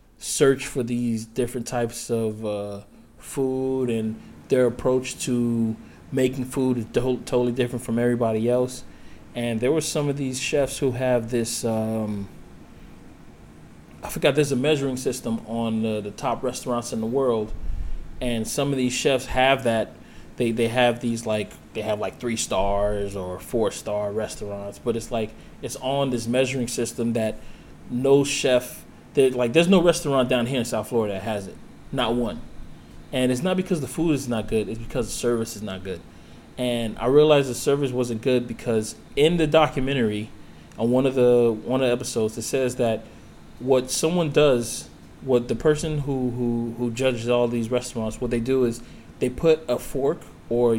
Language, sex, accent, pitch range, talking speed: English, male, American, 110-130 Hz, 175 wpm